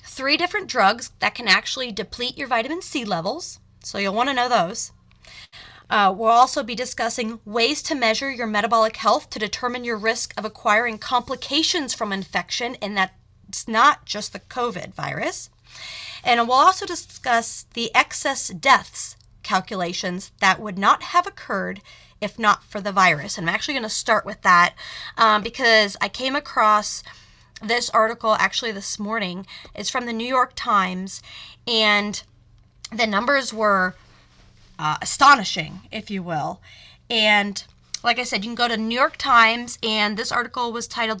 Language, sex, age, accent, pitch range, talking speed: English, female, 30-49, American, 205-250 Hz, 160 wpm